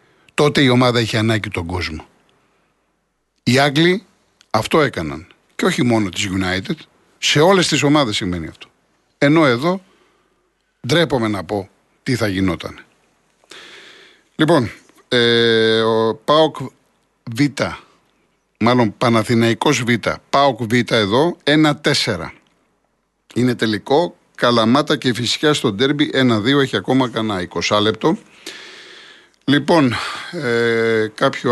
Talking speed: 110 wpm